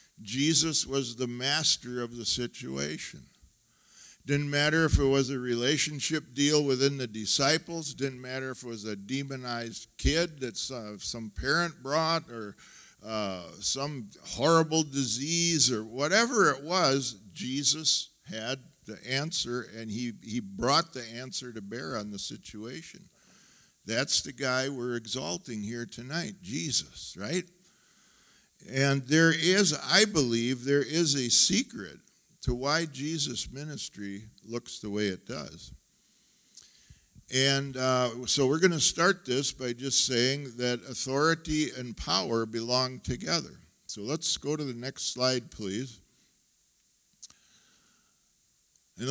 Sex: male